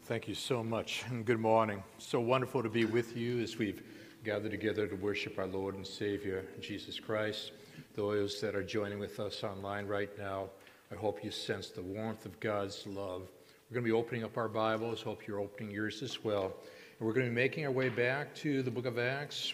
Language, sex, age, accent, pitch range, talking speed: English, male, 50-69, American, 105-125 Hz, 220 wpm